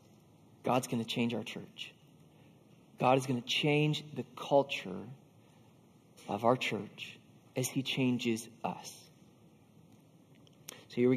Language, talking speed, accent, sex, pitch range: English, 120 wpm, American, male, 145-205 Hz